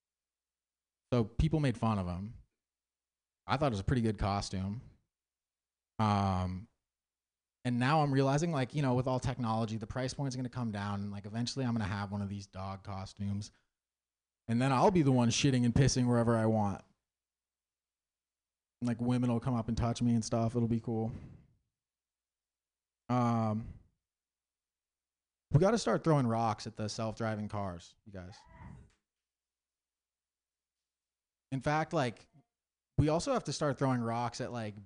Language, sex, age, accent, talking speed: English, male, 30-49, American, 165 wpm